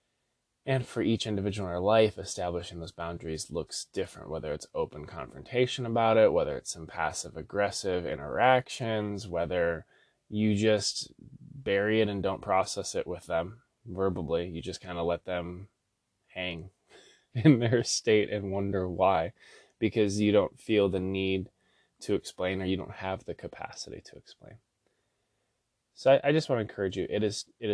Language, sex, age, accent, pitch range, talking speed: English, male, 20-39, American, 90-115 Hz, 160 wpm